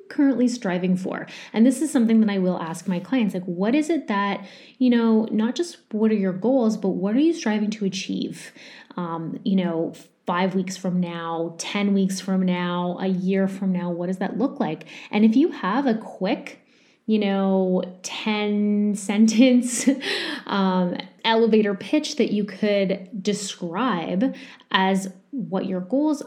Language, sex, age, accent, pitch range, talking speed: English, female, 20-39, American, 185-250 Hz, 170 wpm